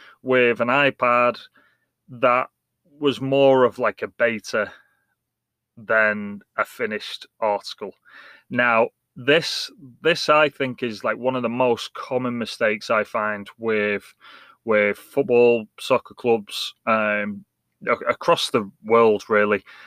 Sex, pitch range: male, 110-130 Hz